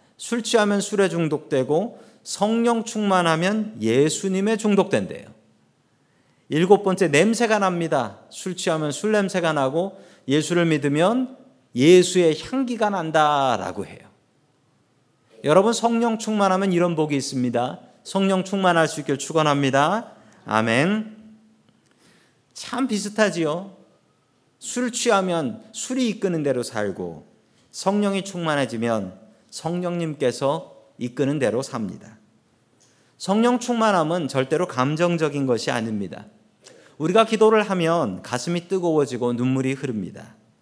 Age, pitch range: 40-59, 135-200 Hz